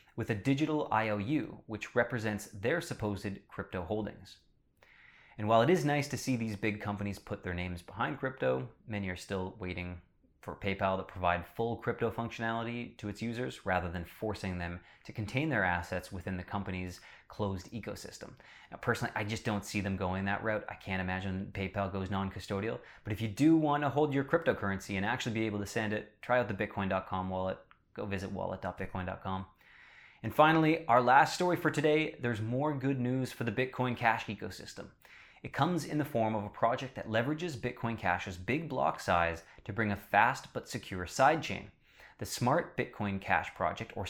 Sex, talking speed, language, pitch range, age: male, 185 wpm, English, 95-120 Hz, 20-39